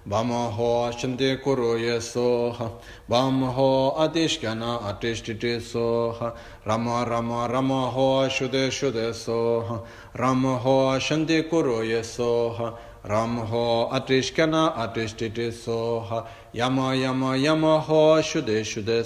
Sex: male